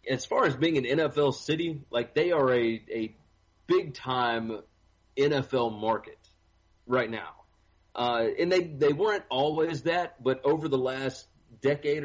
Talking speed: 150 wpm